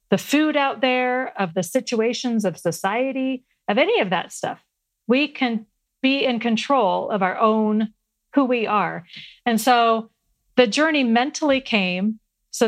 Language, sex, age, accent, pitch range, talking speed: English, female, 40-59, American, 215-260 Hz, 150 wpm